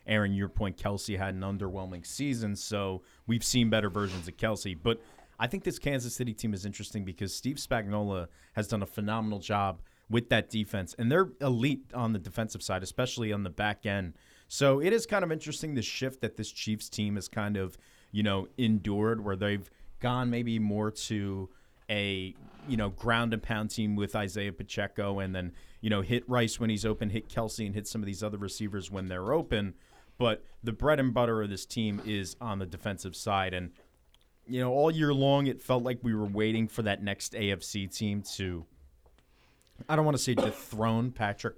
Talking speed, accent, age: 200 wpm, American, 30-49